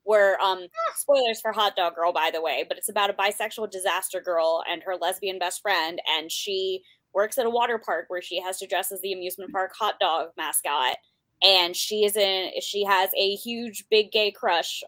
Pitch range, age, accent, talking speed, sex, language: 180-230 Hz, 20-39, American, 210 wpm, female, English